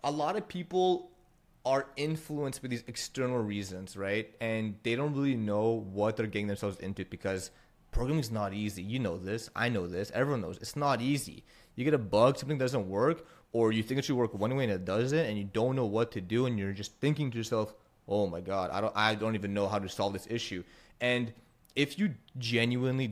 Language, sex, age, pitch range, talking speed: English, male, 30-49, 100-125 Hz, 225 wpm